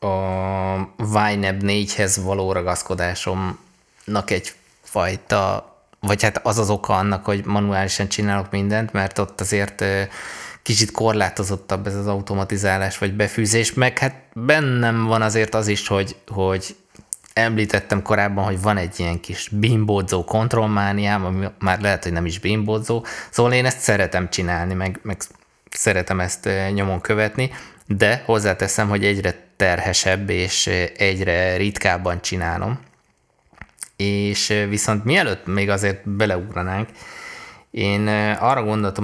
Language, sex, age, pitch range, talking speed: Hungarian, male, 20-39, 95-105 Hz, 125 wpm